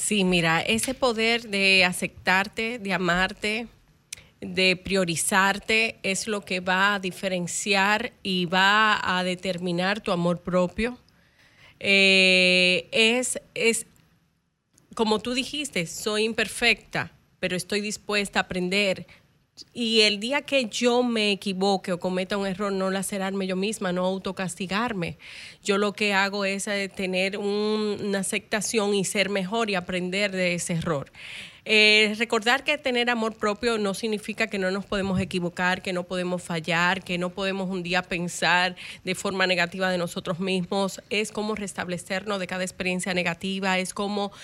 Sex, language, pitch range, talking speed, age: female, Spanish, 185-215 Hz, 145 wpm, 30-49